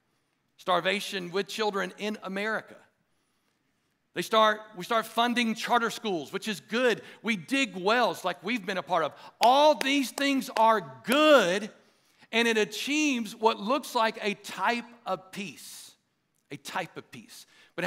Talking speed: 150 wpm